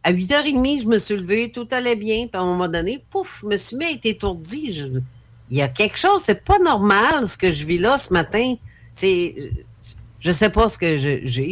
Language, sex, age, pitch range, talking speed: French, female, 50-69, 135-195 Hz, 235 wpm